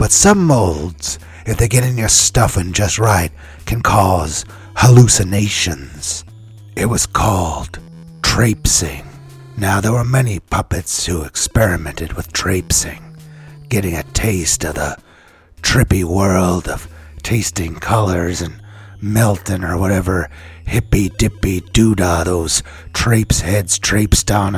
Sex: male